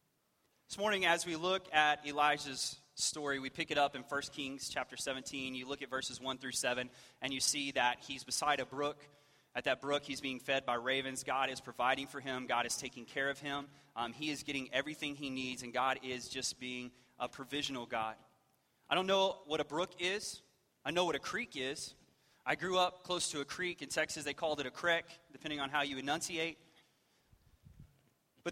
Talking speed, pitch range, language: 210 wpm, 130-155 Hz, English